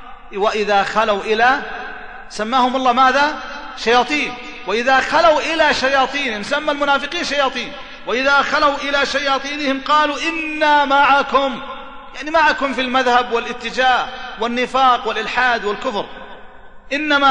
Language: Arabic